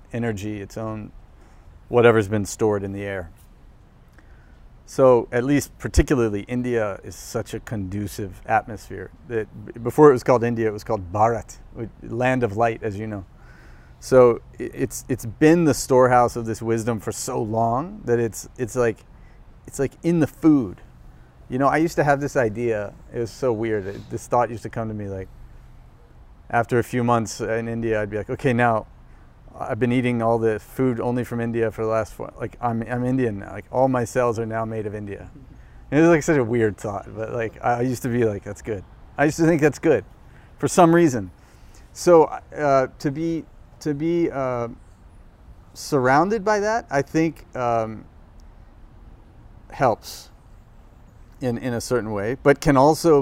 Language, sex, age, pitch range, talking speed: English, male, 30-49, 105-125 Hz, 185 wpm